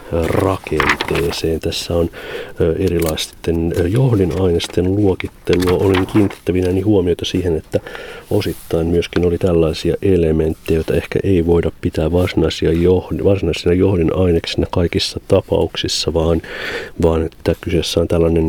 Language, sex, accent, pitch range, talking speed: Finnish, male, native, 80-90 Hz, 105 wpm